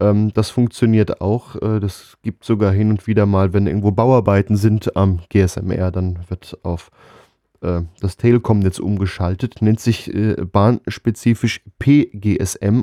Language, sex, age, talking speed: German, male, 10-29, 125 wpm